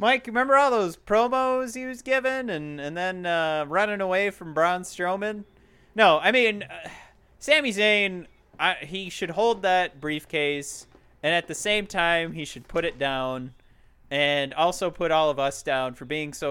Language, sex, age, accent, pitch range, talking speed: English, male, 30-49, American, 130-200 Hz, 180 wpm